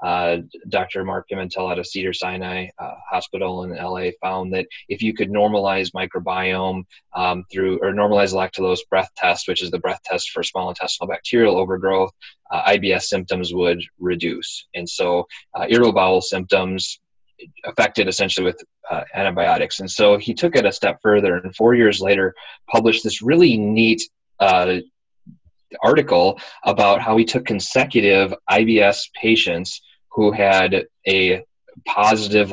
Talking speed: 145 wpm